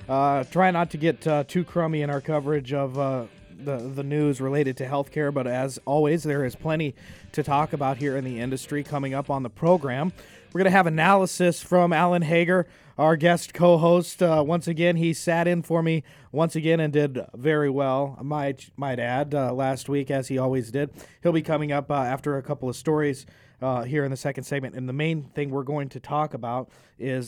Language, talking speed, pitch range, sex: English, 215 wpm, 130-155 Hz, male